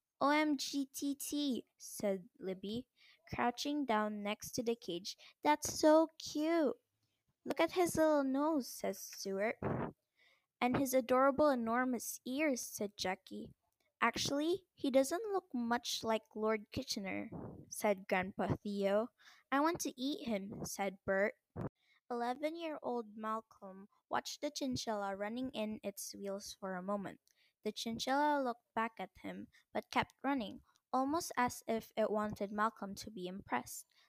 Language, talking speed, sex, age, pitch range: English, 130 wpm, female, 10-29, 205-275 Hz